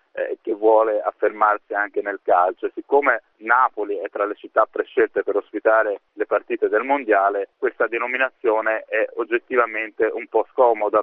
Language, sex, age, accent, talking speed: Italian, male, 30-49, native, 140 wpm